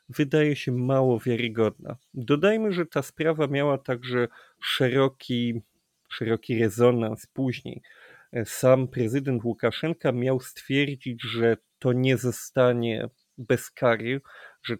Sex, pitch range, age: male, 120-155 Hz, 30-49